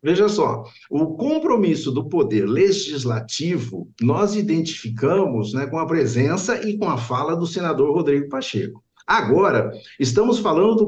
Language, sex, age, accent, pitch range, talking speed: Portuguese, male, 60-79, Brazilian, 145-225 Hz, 140 wpm